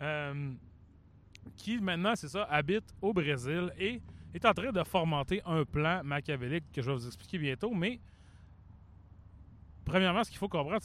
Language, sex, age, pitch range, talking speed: French, male, 30-49, 130-190 Hz, 160 wpm